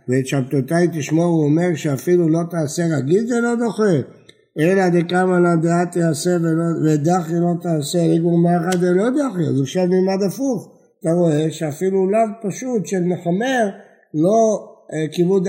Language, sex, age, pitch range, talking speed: Hebrew, male, 60-79, 150-185 Hz, 145 wpm